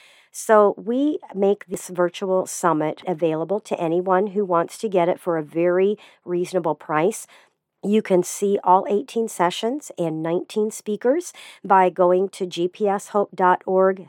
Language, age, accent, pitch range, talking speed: English, 50-69, American, 165-195 Hz, 135 wpm